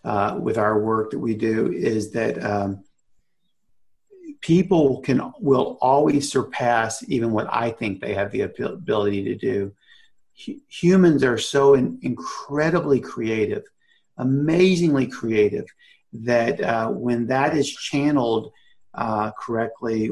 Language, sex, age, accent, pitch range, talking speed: English, male, 50-69, American, 110-140 Hz, 120 wpm